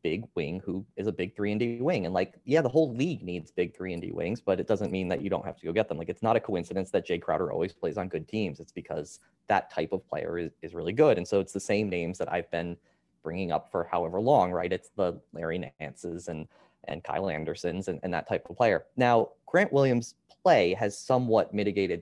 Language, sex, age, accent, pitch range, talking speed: English, male, 20-39, American, 90-110 Hz, 255 wpm